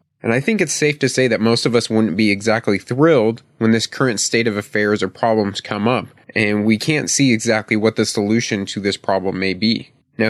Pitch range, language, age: 105-130 Hz, English, 20-39